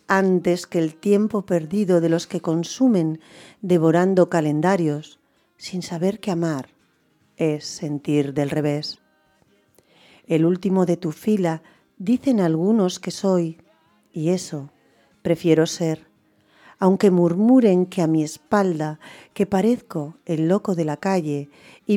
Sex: female